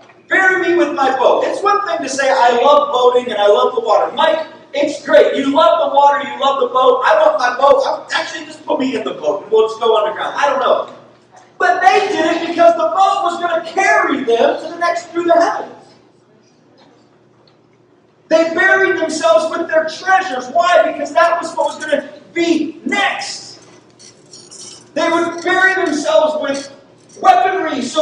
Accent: American